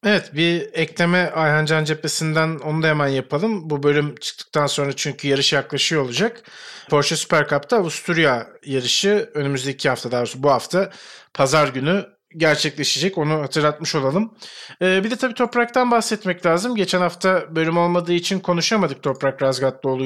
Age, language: 40-59, Turkish